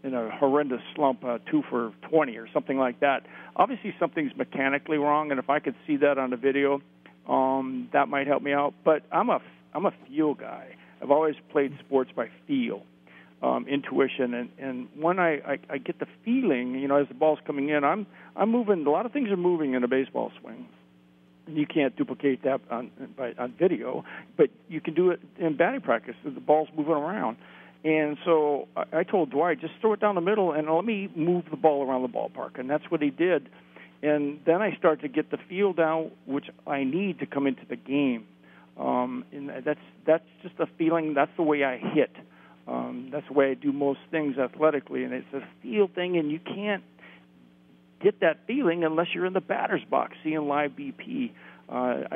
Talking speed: 205 wpm